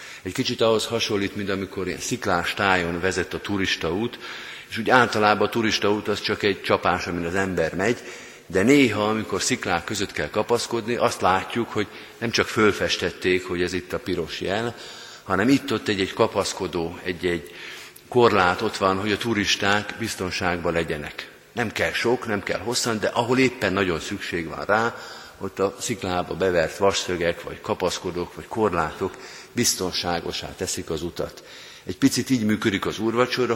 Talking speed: 160 wpm